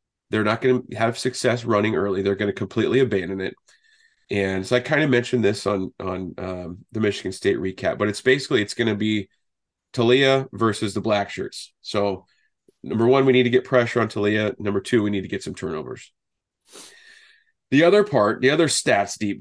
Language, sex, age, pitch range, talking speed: English, male, 30-49, 100-130 Hz, 200 wpm